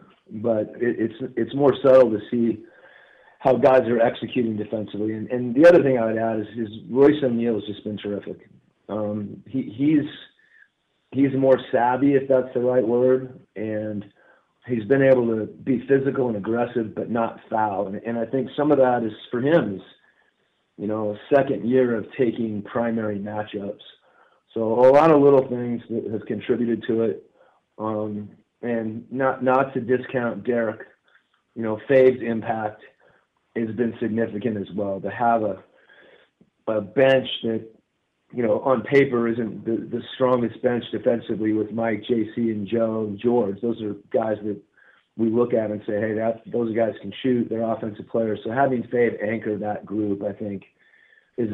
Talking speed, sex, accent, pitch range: 175 wpm, male, American, 110-130 Hz